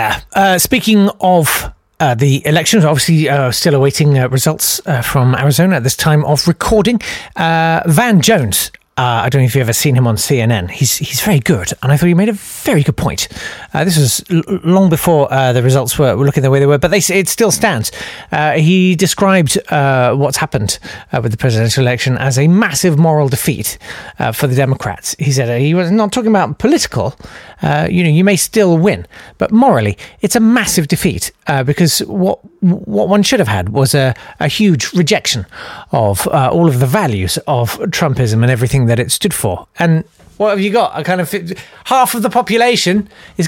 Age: 40-59